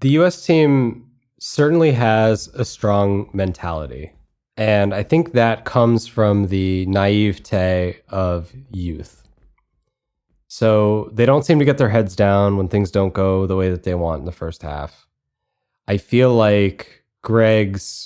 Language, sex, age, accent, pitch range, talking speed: English, male, 20-39, American, 100-130 Hz, 145 wpm